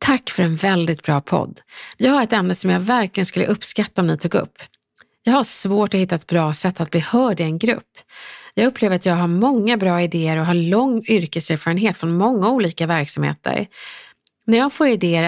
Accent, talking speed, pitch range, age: native, 210 wpm, 170-235 Hz, 30-49